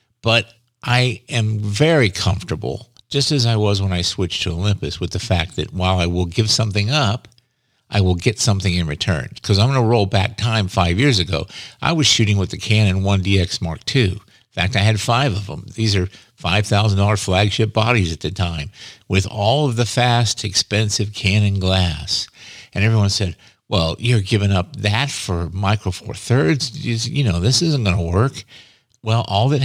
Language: English